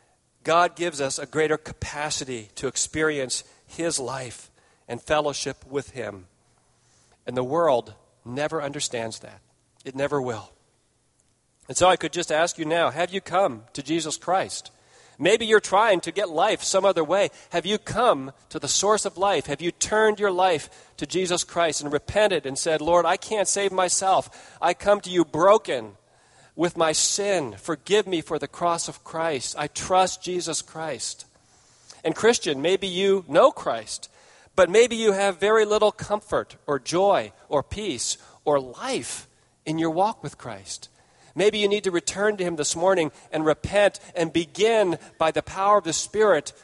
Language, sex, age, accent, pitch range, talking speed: English, male, 40-59, American, 150-200 Hz, 170 wpm